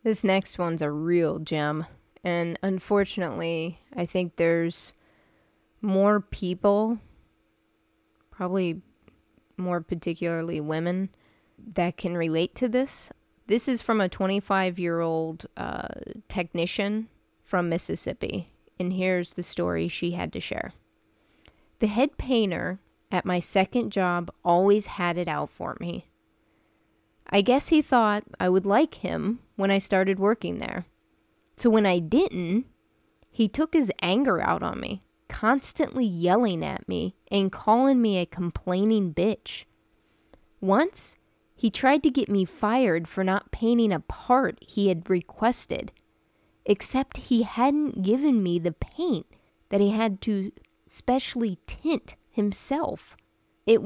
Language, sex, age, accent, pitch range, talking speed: English, female, 20-39, American, 175-225 Hz, 130 wpm